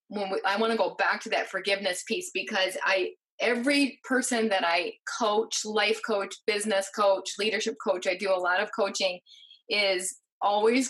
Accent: American